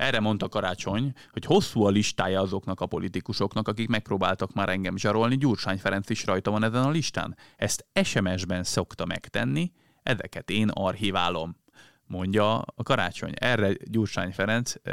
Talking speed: 145 wpm